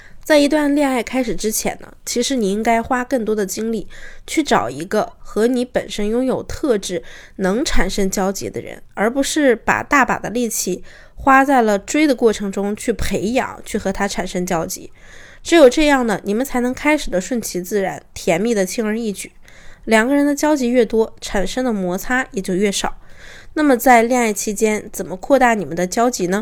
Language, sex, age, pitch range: Chinese, female, 20-39, 195-245 Hz